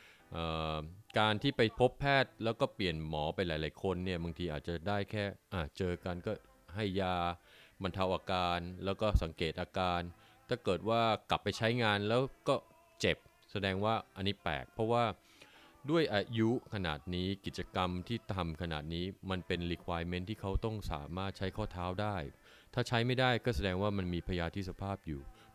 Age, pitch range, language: 20-39, 85-110 Hz, Thai